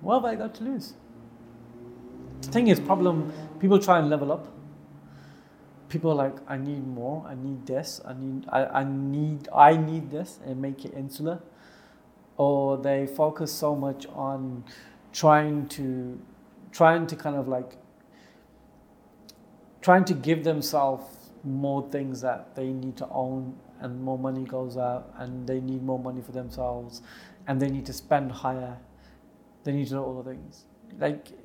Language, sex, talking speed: English, male, 165 wpm